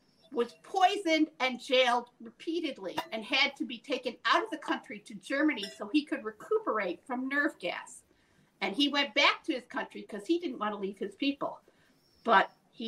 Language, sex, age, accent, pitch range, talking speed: English, female, 50-69, American, 205-300 Hz, 185 wpm